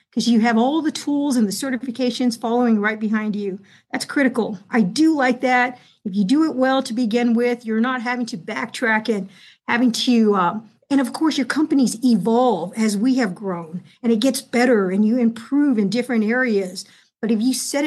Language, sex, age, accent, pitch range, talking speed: English, female, 50-69, American, 215-255 Hz, 200 wpm